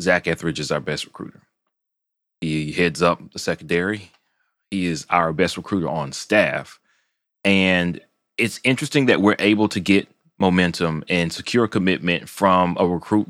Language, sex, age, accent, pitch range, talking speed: English, male, 30-49, American, 85-100 Hz, 150 wpm